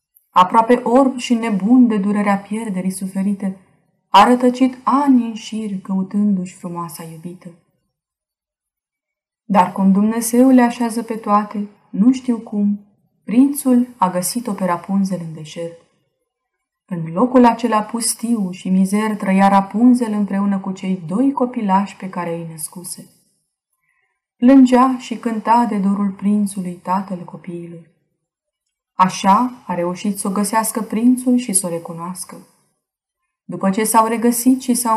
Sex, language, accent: female, Romanian, native